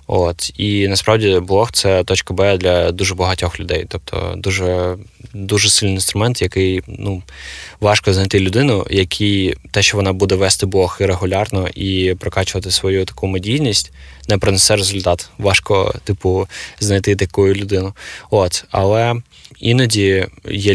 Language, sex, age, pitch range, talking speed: Ukrainian, male, 20-39, 90-100 Hz, 140 wpm